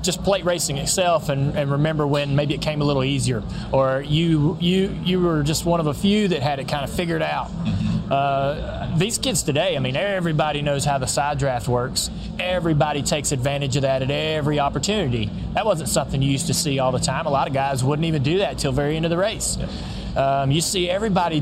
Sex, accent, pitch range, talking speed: male, American, 140-170 Hz, 225 wpm